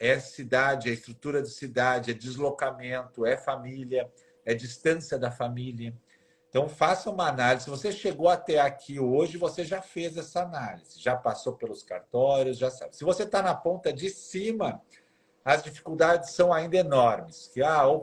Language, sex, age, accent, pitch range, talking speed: Portuguese, male, 50-69, Brazilian, 130-170 Hz, 165 wpm